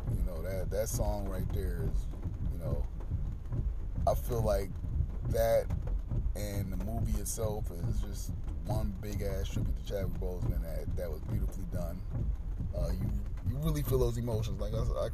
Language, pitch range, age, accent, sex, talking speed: English, 85-105 Hz, 30-49, American, male, 165 wpm